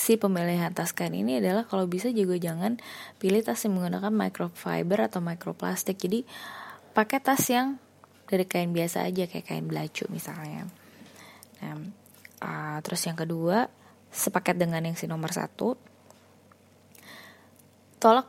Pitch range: 180-230 Hz